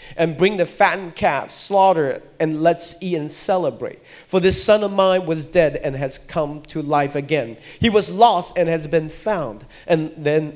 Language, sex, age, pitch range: Japanese, male, 40-59, 155-190 Hz